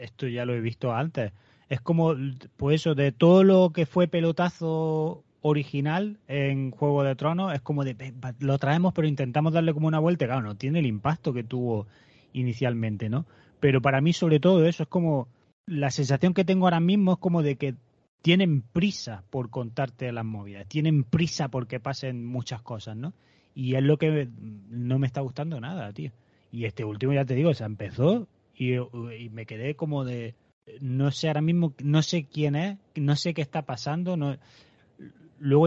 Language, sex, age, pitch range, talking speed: Spanish, male, 30-49, 125-165 Hz, 185 wpm